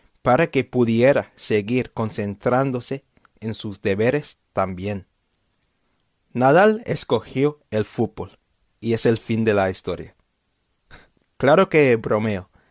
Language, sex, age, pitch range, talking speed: Spanish, male, 30-49, 110-150 Hz, 110 wpm